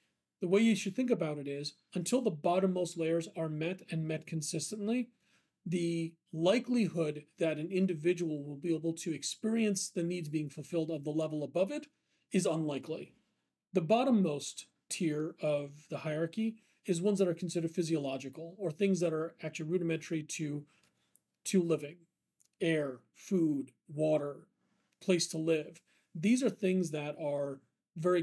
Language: English